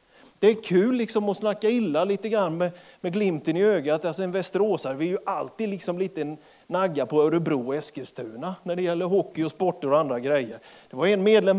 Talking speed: 205 wpm